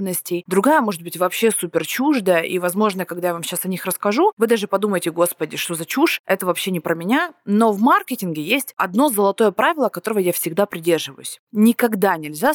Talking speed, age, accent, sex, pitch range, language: 190 wpm, 20-39, native, female, 170-235 Hz, Russian